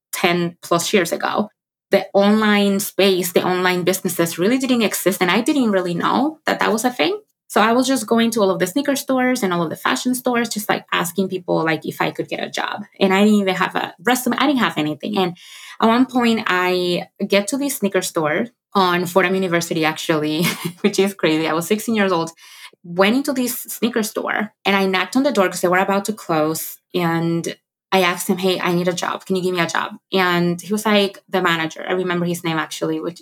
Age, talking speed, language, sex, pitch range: 20-39, 230 wpm, English, female, 170-210 Hz